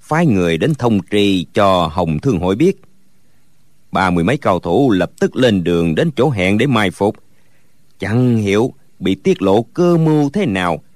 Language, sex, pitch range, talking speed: Vietnamese, male, 90-135 Hz, 185 wpm